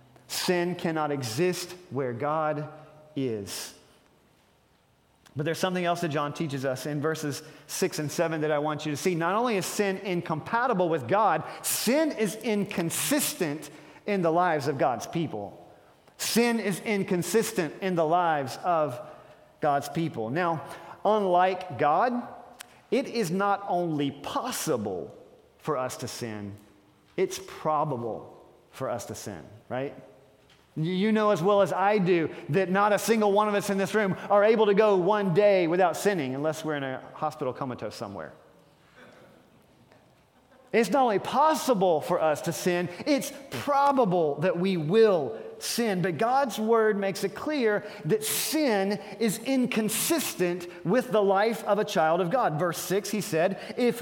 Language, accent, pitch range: English, American, 155-215 Hz